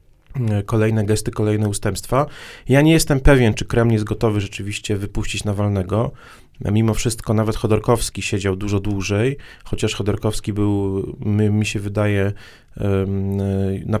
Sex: male